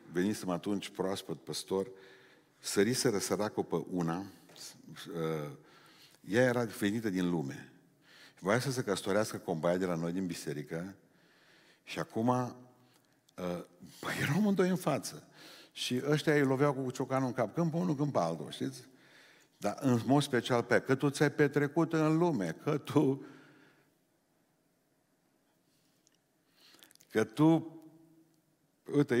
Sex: male